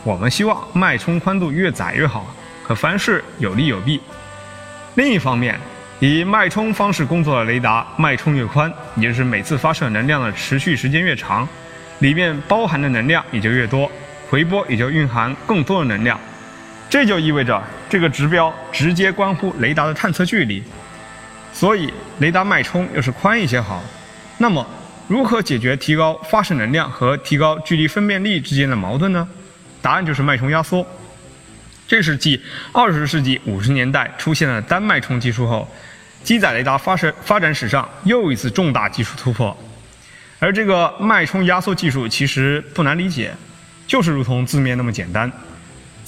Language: Chinese